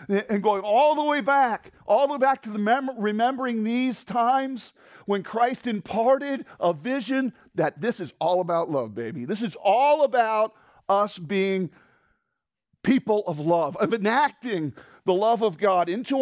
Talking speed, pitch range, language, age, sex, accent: 165 wpm, 170-240 Hz, English, 40-59, male, American